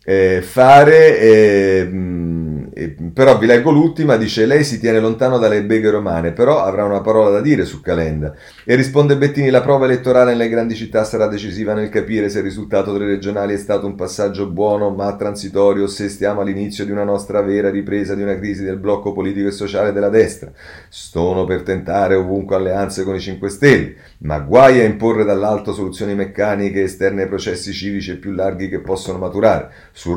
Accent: native